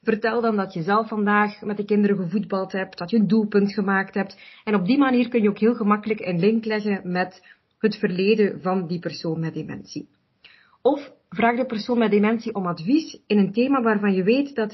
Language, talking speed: Dutch, 210 wpm